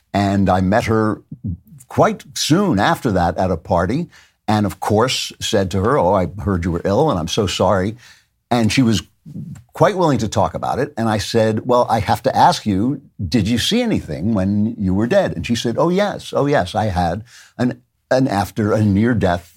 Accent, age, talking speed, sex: American, 60-79, 205 wpm, male